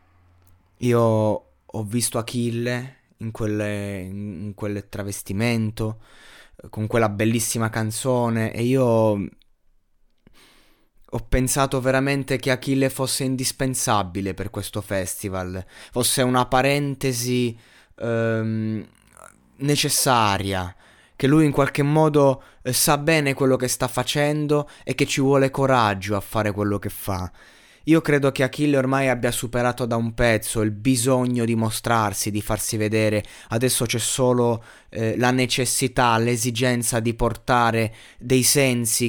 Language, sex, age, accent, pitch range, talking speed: Italian, male, 20-39, native, 110-130 Hz, 120 wpm